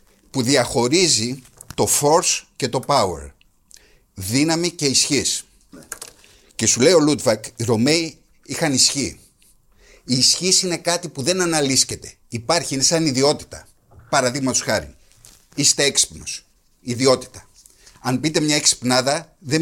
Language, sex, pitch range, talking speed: Greek, male, 115-155 Hz, 125 wpm